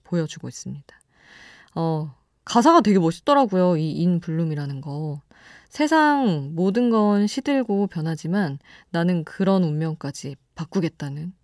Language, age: Korean, 20-39